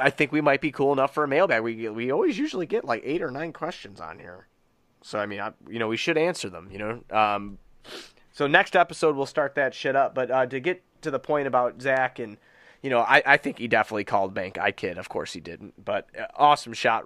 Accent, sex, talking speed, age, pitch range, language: American, male, 250 wpm, 30-49, 110-130 Hz, English